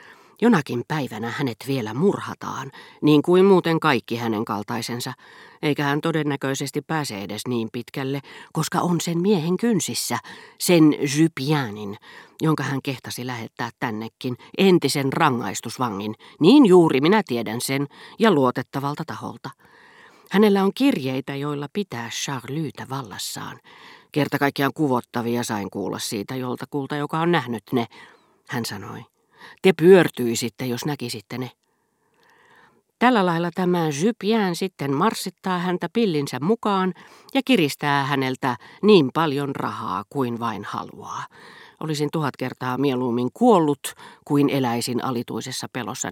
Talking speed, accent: 120 wpm, native